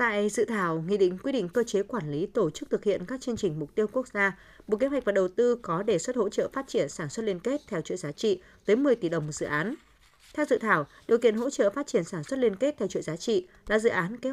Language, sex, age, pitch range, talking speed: Vietnamese, female, 20-39, 175-240 Hz, 295 wpm